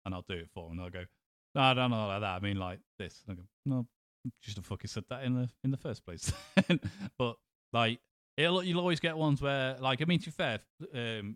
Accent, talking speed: British, 255 wpm